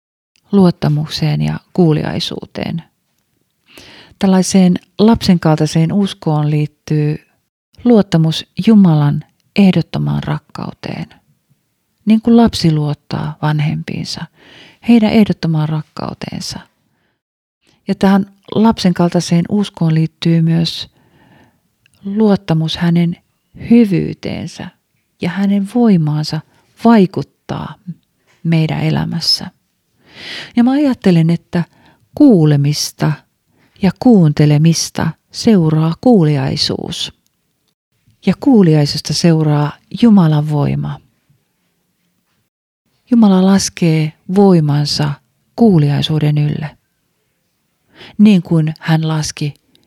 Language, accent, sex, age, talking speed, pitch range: Finnish, native, female, 40-59, 70 wpm, 150-195 Hz